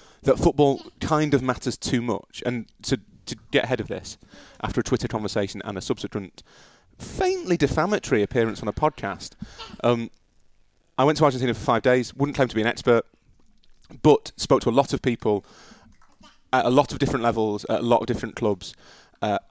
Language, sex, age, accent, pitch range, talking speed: English, male, 30-49, British, 110-135 Hz, 190 wpm